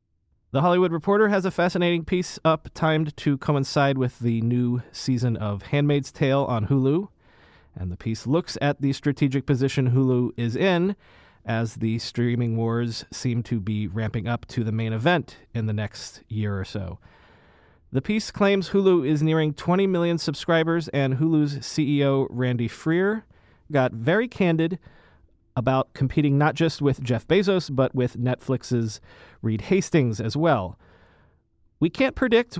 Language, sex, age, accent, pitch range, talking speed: English, male, 30-49, American, 115-165 Hz, 155 wpm